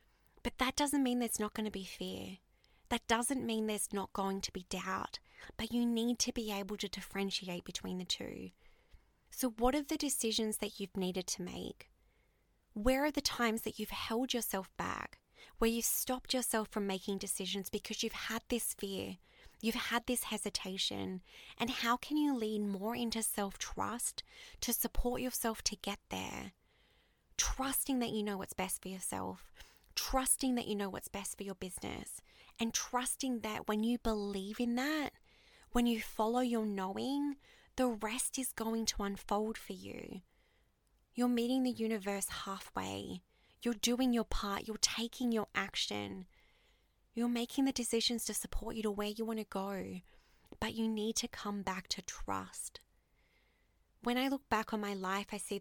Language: English